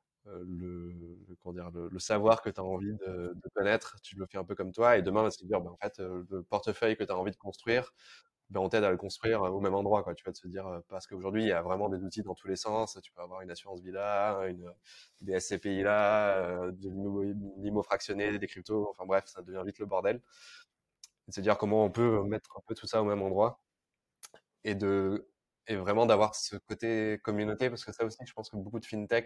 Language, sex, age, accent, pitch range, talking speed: French, male, 20-39, French, 95-105 Hz, 240 wpm